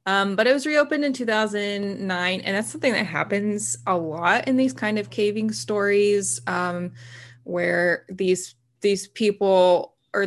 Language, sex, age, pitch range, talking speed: English, female, 20-39, 170-205 Hz, 150 wpm